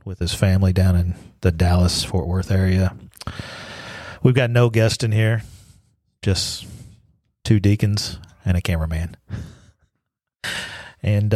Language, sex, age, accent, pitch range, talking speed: English, male, 40-59, American, 95-115 Hz, 115 wpm